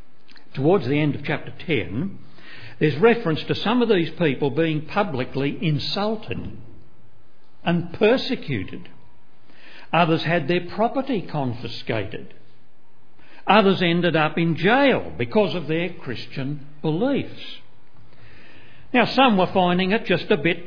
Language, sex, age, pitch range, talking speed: English, male, 60-79, 140-210 Hz, 120 wpm